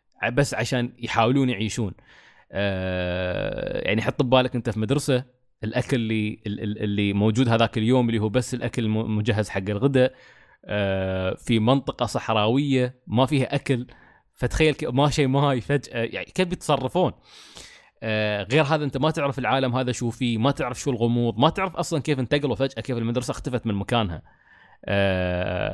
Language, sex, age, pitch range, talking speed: Arabic, male, 20-39, 110-135 Hz, 155 wpm